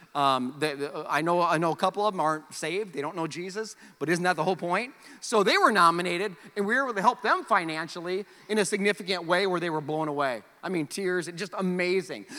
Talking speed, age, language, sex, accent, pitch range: 230 wpm, 40-59, English, male, American, 180-285 Hz